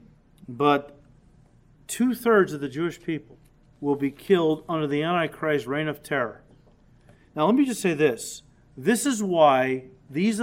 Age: 40-59